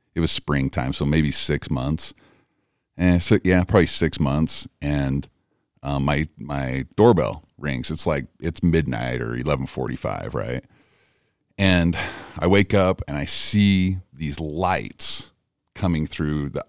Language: English